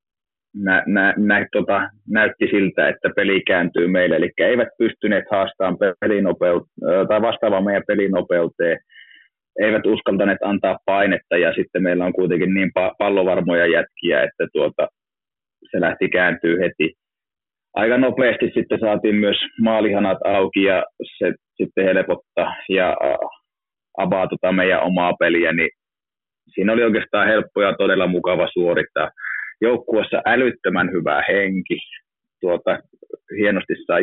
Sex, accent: male, native